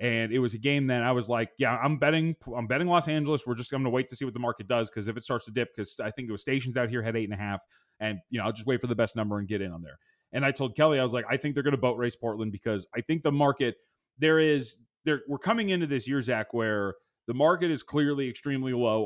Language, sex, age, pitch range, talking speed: English, male, 30-49, 120-155 Hz, 305 wpm